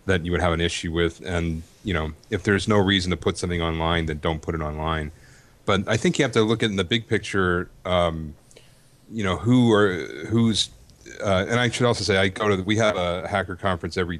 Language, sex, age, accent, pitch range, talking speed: English, male, 40-59, American, 85-105 Hz, 235 wpm